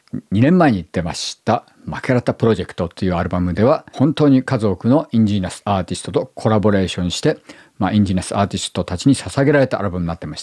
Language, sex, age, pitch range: Japanese, male, 50-69, 100-145 Hz